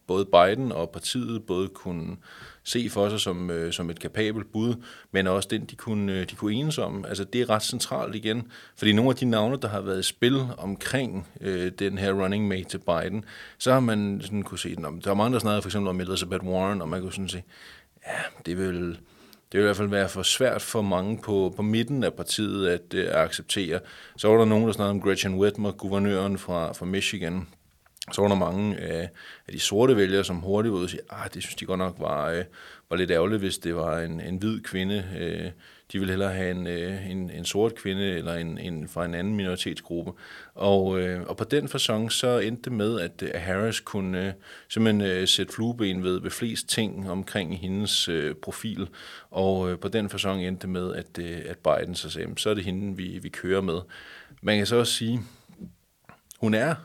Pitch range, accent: 90-110 Hz, native